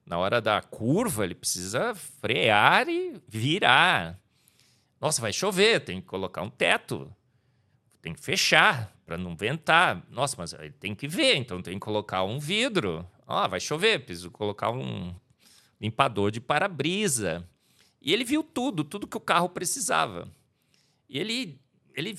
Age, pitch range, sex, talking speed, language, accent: 40-59, 100-165 Hz, male, 150 wpm, Portuguese, Brazilian